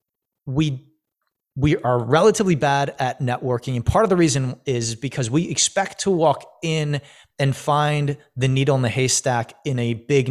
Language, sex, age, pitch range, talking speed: English, male, 30-49, 115-145 Hz, 170 wpm